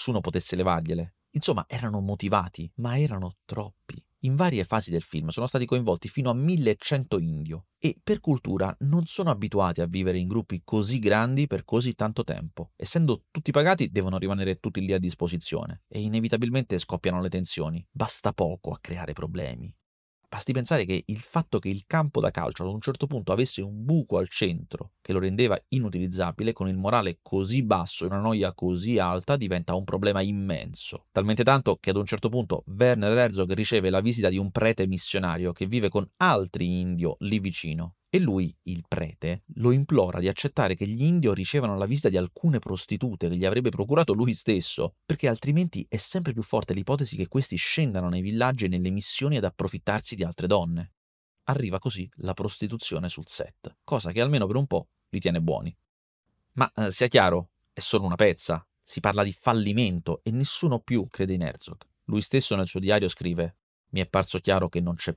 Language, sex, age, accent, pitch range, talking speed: Italian, male, 30-49, native, 90-125 Hz, 190 wpm